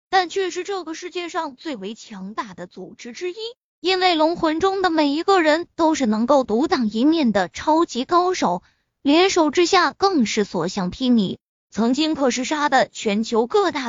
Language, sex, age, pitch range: Chinese, female, 20-39, 250-365 Hz